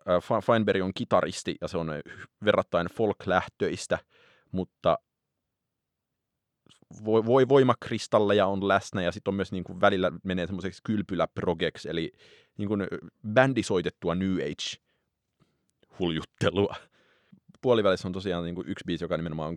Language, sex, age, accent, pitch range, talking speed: Finnish, male, 30-49, native, 85-100 Hz, 110 wpm